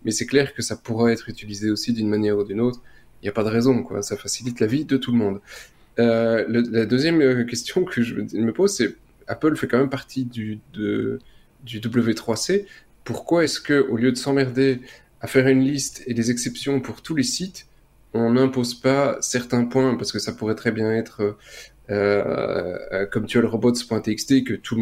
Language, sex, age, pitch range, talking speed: French, male, 20-39, 105-130 Hz, 210 wpm